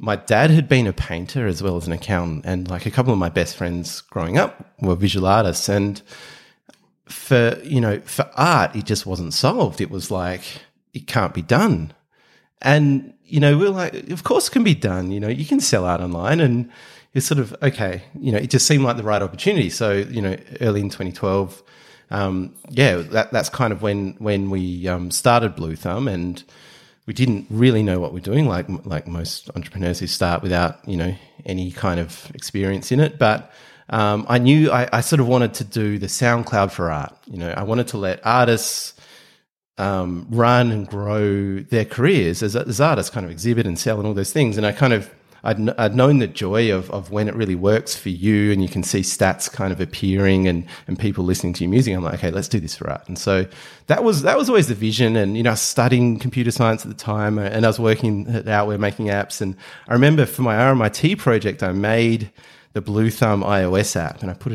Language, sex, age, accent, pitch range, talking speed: English, male, 30-49, Australian, 95-120 Hz, 225 wpm